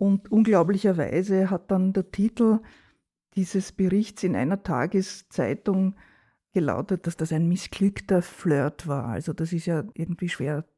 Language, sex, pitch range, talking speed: German, female, 160-190 Hz, 135 wpm